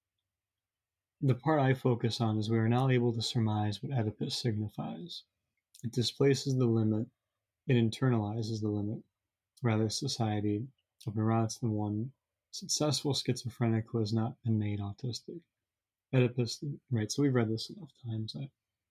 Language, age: English, 30-49